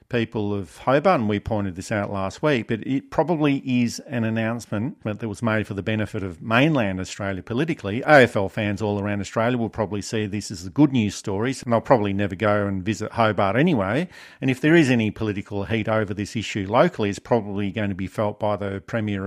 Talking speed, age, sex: 215 wpm, 50-69, male